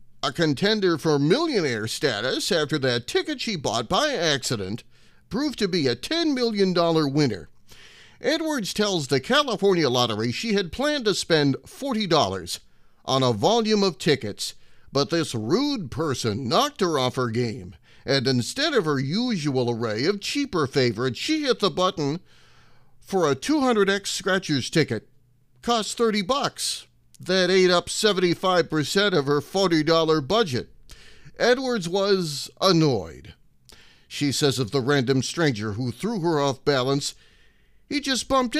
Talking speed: 145 wpm